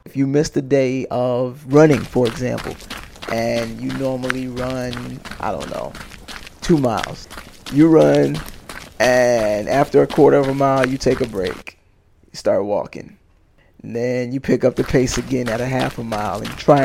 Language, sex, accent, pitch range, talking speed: English, male, American, 125-145 Hz, 175 wpm